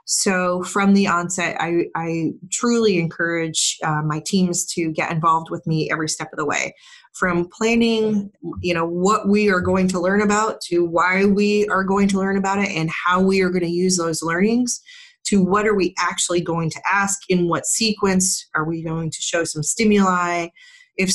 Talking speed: 195 wpm